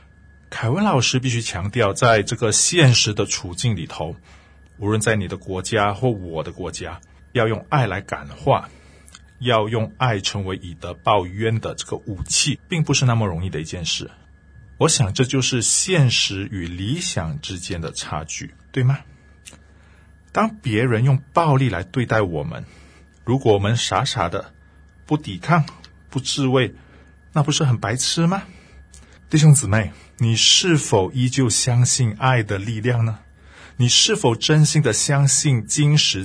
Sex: male